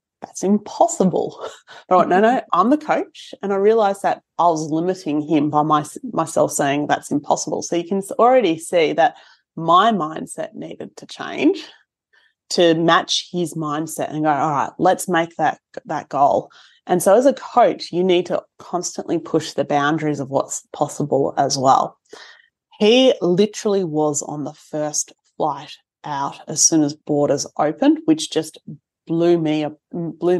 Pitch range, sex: 155-205 Hz, female